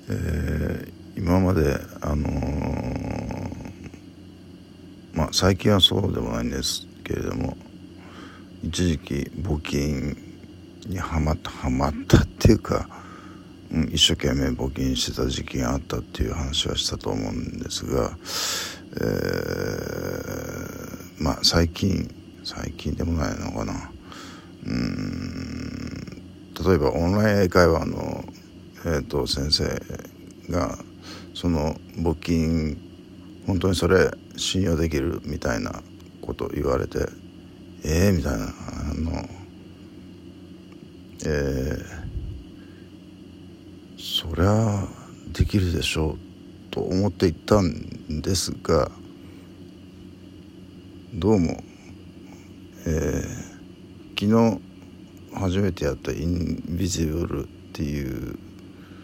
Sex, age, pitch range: male, 50-69, 80-95 Hz